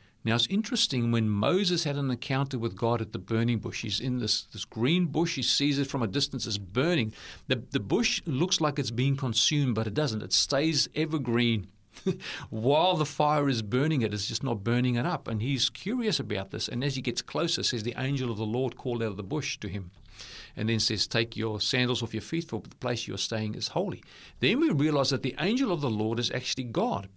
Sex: male